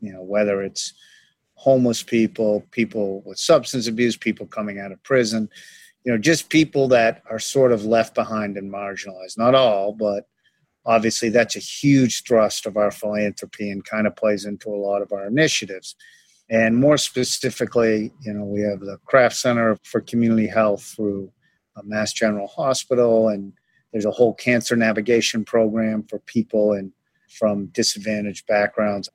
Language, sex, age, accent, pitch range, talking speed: English, male, 50-69, American, 105-120 Hz, 165 wpm